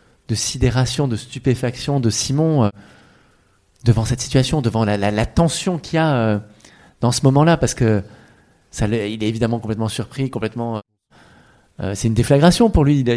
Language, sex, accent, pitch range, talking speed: French, male, French, 115-140 Hz, 175 wpm